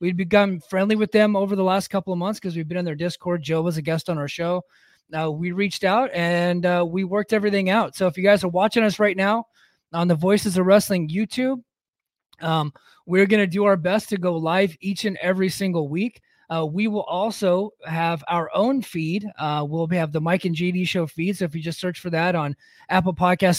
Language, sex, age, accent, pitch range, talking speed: English, male, 20-39, American, 165-200 Hz, 230 wpm